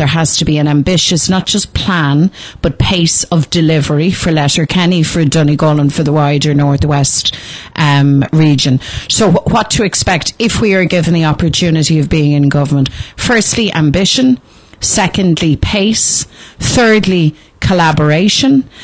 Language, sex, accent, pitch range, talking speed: English, female, Irish, 150-180 Hz, 145 wpm